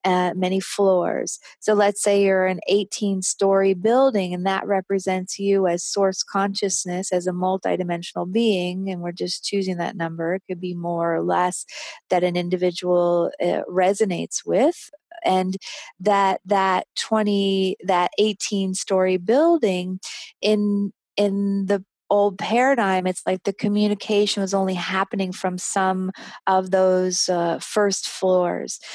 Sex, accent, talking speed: female, American, 140 wpm